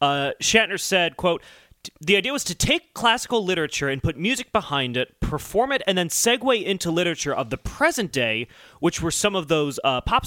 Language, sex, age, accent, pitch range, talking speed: English, male, 30-49, American, 130-205 Hz, 200 wpm